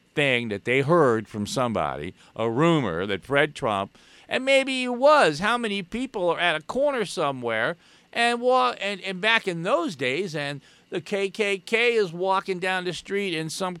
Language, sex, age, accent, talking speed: English, male, 50-69, American, 180 wpm